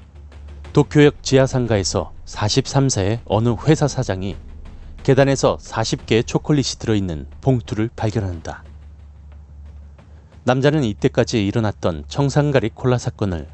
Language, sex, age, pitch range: Korean, male, 30-49, 75-130 Hz